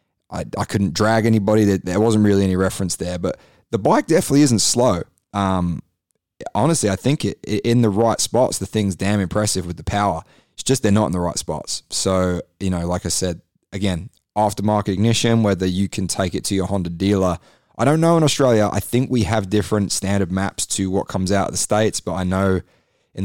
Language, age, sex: English, 20-39, male